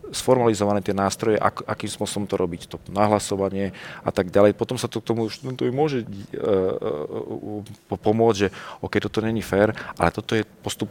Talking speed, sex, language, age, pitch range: 200 wpm, male, Slovak, 40-59, 95-110 Hz